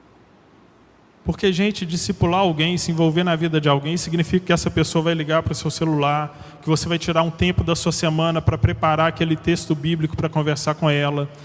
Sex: male